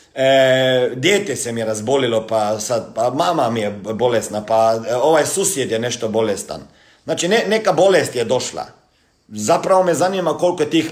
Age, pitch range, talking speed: 50-69, 115-170 Hz, 170 wpm